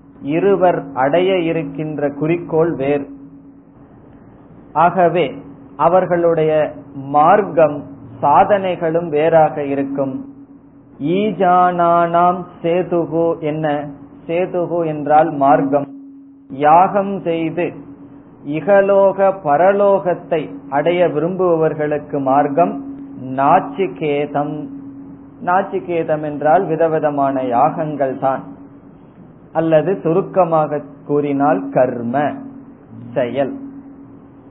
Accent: native